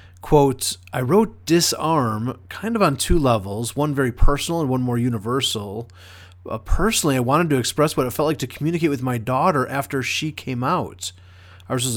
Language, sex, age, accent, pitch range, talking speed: English, male, 30-49, American, 115-145 Hz, 185 wpm